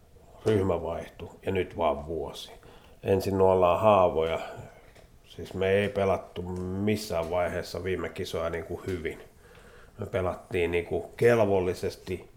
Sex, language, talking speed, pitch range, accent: male, Finnish, 115 wpm, 85-100 Hz, native